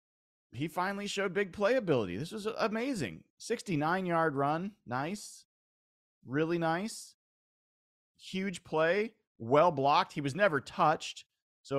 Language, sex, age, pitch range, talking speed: English, male, 30-49, 110-155 Hz, 105 wpm